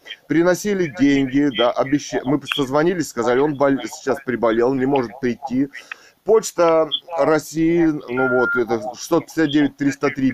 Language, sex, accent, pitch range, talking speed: Russian, male, native, 130-170 Hz, 120 wpm